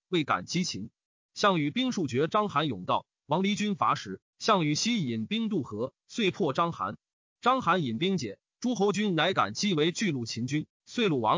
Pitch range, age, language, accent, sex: 145-210 Hz, 30-49, Chinese, native, male